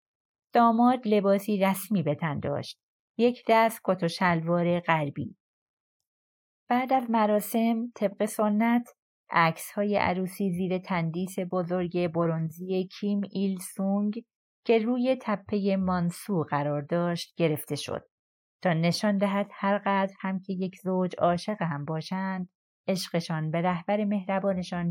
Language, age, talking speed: Persian, 30-49, 110 wpm